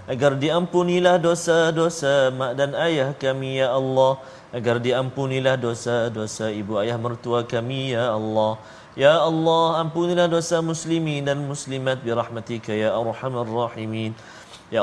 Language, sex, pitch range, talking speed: Malayalam, male, 135-170 Hz, 125 wpm